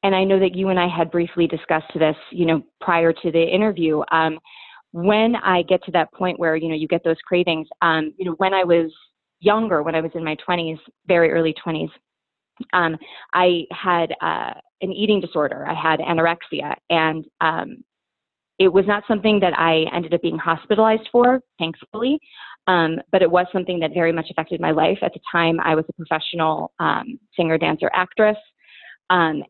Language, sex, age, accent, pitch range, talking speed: English, female, 30-49, American, 165-195 Hz, 190 wpm